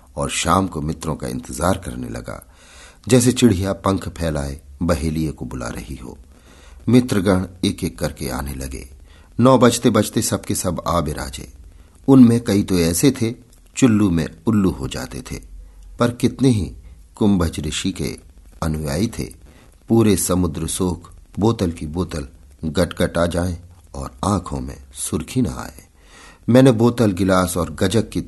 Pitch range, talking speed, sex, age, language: 75-100 Hz, 150 wpm, male, 50-69, Hindi